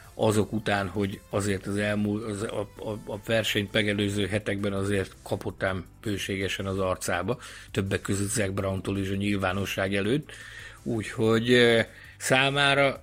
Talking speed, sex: 135 wpm, male